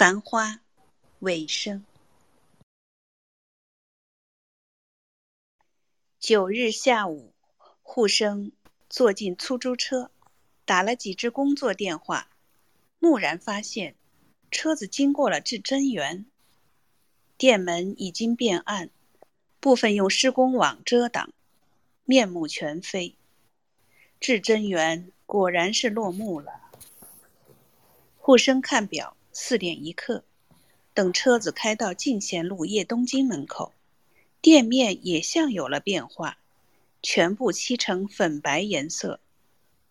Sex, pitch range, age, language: female, 180-255 Hz, 50-69, Chinese